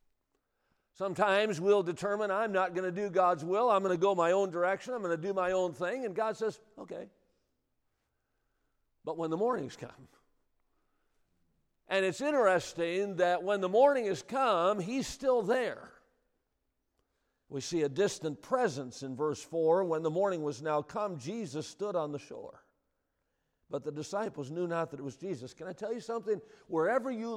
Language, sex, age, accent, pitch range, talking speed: English, male, 50-69, American, 170-220 Hz, 175 wpm